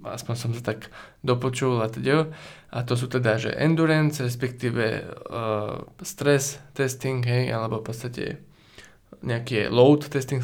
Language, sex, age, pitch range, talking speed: Slovak, male, 20-39, 120-150 Hz, 125 wpm